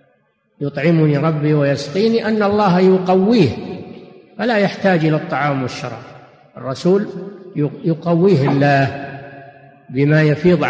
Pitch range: 145-175 Hz